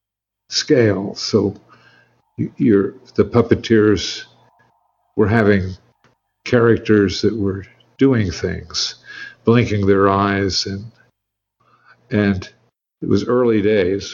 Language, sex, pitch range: English, male, 95-110 Hz